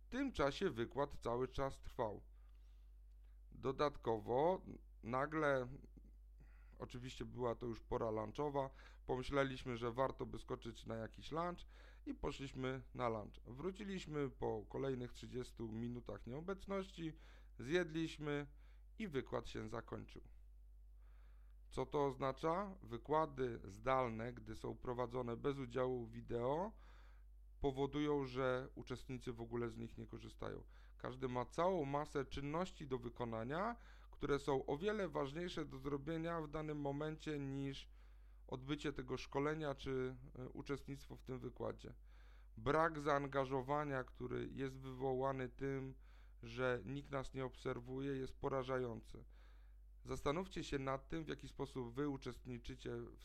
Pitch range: 115-145 Hz